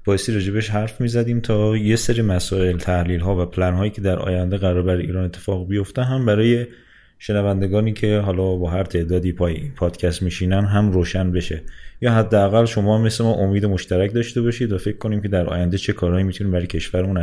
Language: Persian